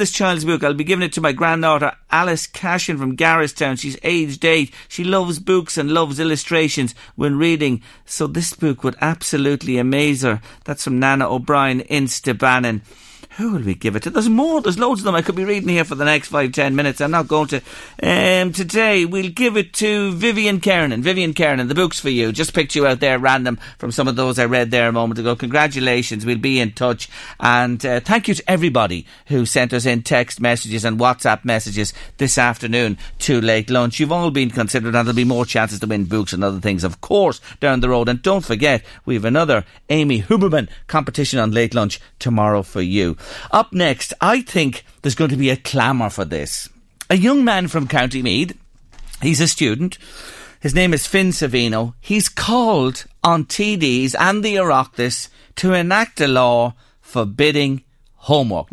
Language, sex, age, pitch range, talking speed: English, male, 40-59, 120-175 Hz, 200 wpm